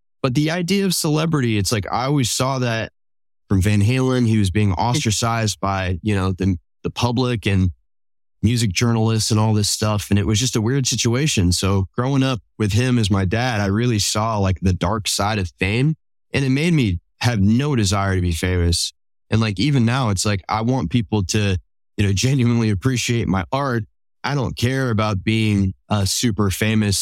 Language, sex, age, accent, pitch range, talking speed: English, male, 20-39, American, 95-115 Hz, 200 wpm